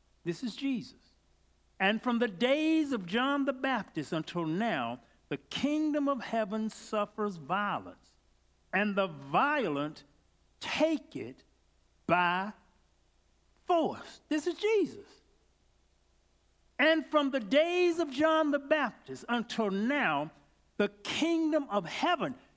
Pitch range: 160-260 Hz